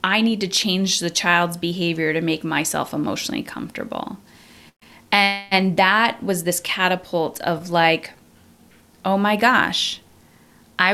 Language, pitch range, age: English, 165-195 Hz, 30-49